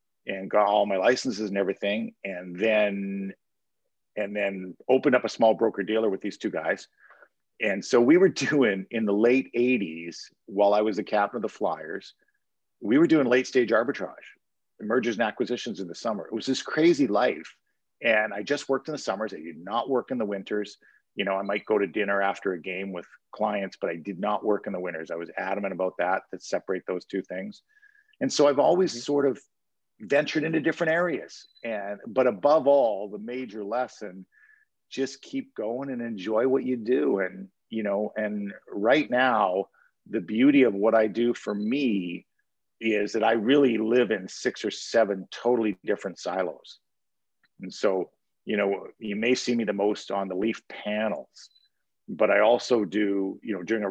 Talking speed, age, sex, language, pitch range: 190 wpm, 50-69, male, English, 100-130 Hz